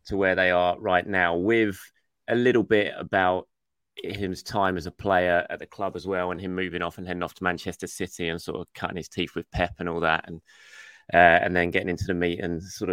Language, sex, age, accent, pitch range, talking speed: English, male, 20-39, British, 90-110 Hz, 240 wpm